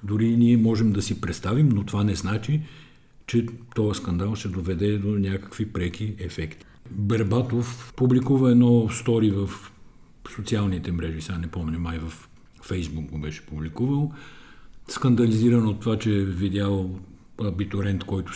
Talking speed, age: 140 wpm, 50-69